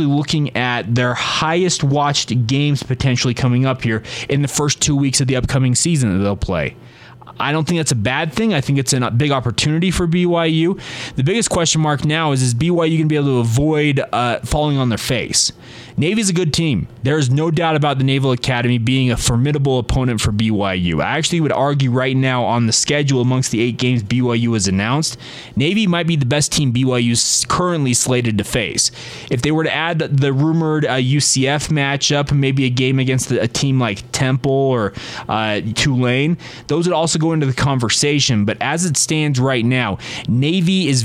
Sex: male